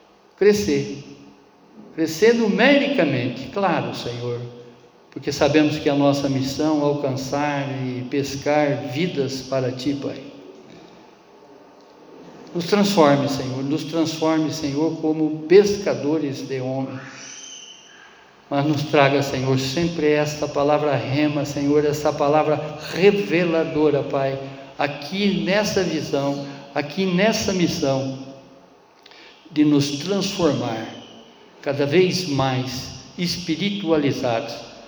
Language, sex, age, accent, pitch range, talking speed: Portuguese, male, 60-79, Brazilian, 135-160 Hz, 95 wpm